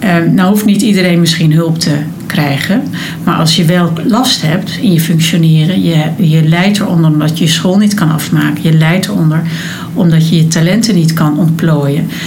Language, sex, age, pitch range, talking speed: Dutch, female, 60-79, 165-190 Hz, 190 wpm